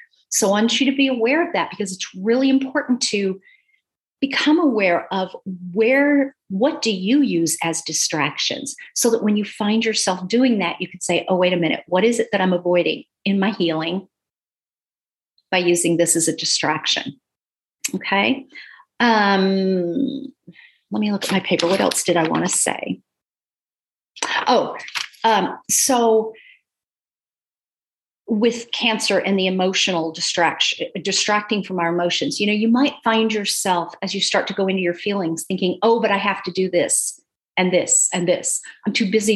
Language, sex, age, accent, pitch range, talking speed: English, female, 40-59, American, 180-235 Hz, 170 wpm